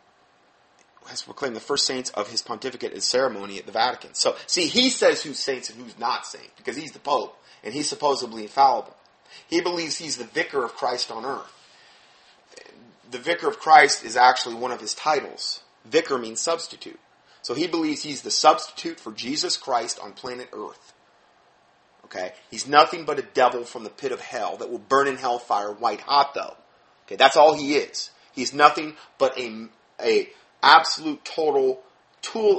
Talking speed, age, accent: 180 wpm, 30-49, American